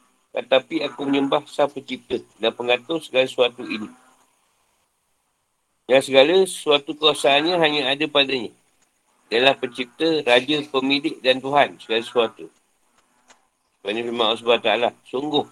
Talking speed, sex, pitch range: 120 wpm, male, 120-140 Hz